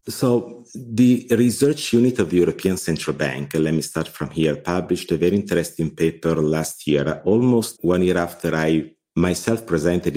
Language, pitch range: English, 80-105 Hz